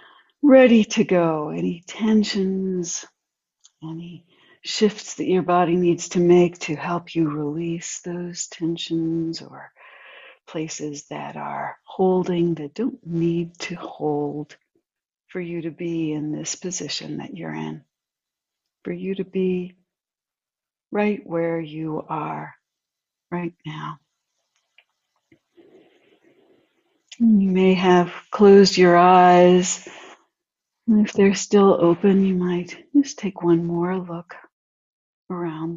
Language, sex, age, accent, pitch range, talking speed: English, female, 60-79, American, 165-195 Hz, 110 wpm